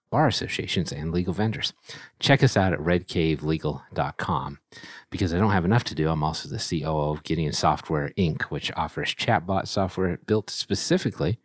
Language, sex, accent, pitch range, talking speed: English, male, American, 80-100 Hz, 160 wpm